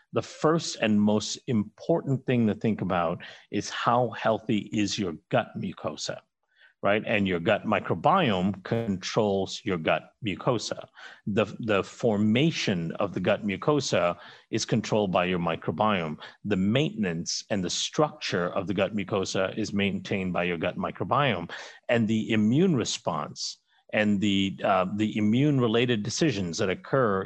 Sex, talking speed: male, 140 wpm